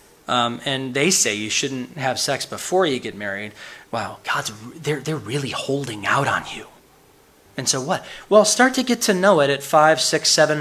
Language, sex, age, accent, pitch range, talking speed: English, male, 30-49, American, 130-155 Hz, 200 wpm